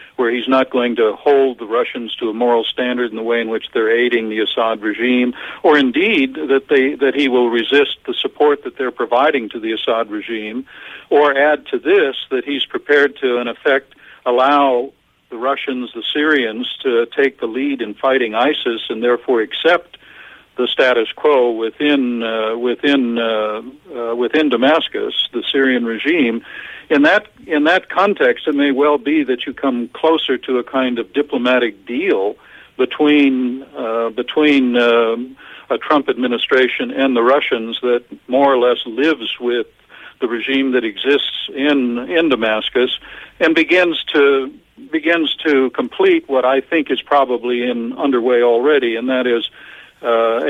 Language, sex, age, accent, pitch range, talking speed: English, male, 60-79, American, 120-150 Hz, 165 wpm